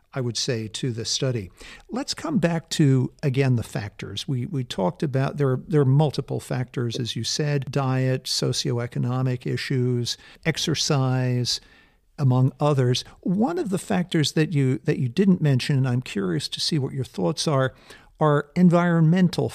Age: 50-69